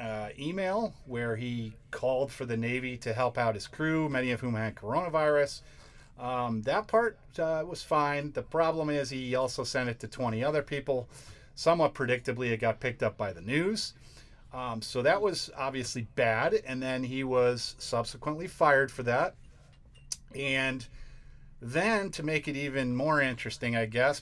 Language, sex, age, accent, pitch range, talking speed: English, male, 40-59, American, 115-140 Hz, 170 wpm